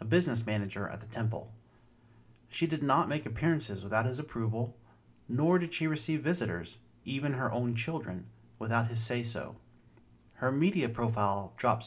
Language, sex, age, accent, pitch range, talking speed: English, male, 40-59, American, 110-135 Hz, 150 wpm